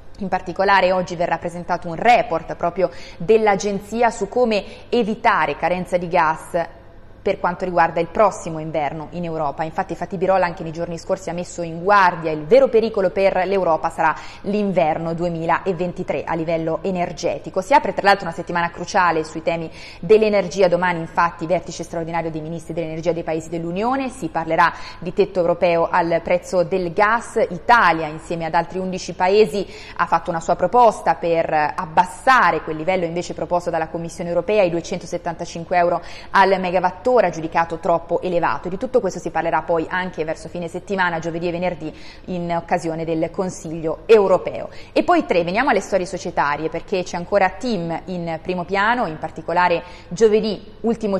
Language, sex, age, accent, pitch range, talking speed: Italian, female, 20-39, native, 165-190 Hz, 160 wpm